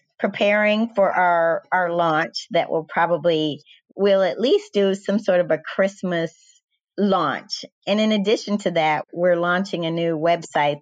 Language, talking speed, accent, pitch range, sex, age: English, 155 wpm, American, 155-185 Hz, female, 30-49